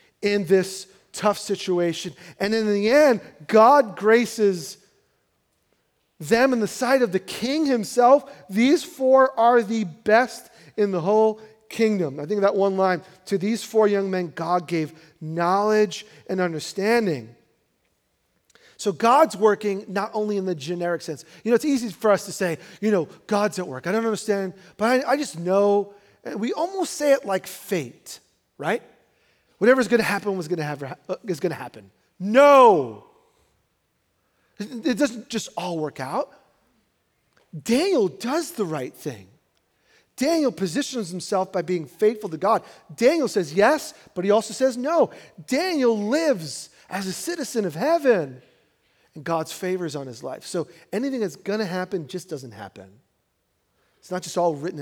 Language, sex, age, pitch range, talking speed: English, male, 40-59, 180-235 Hz, 160 wpm